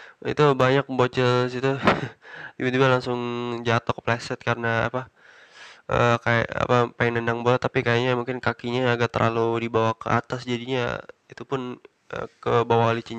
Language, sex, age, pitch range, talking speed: Indonesian, male, 20-39, 115-125 Hz, 145 wpm